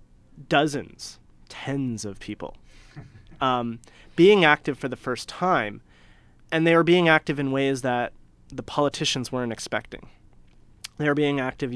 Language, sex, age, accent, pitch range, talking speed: English, male, 30-49, American, 115-140 Hz, 140 wpm